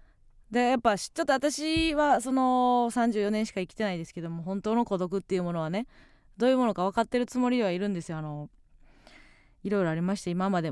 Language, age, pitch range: Japanese, 20-39, 165-210 Hz